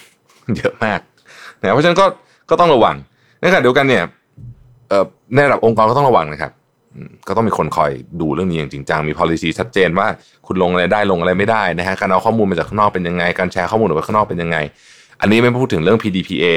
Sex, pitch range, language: male, 90-120 Hz, Thai